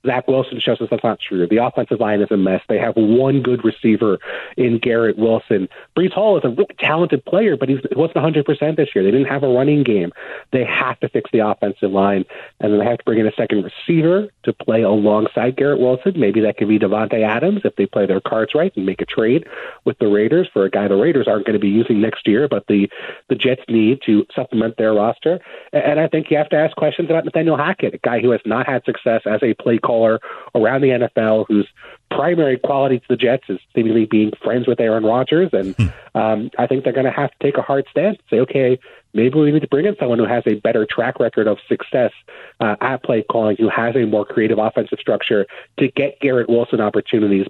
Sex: male